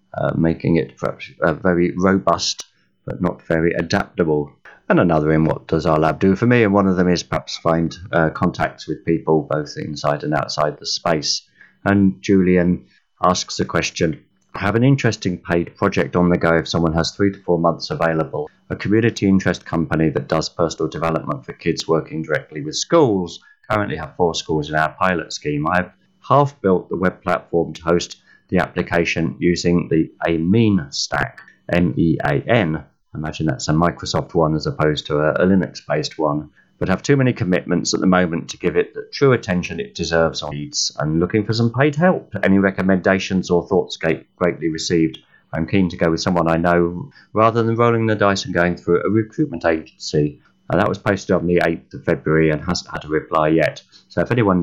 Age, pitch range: 30-49, 80-100 Hz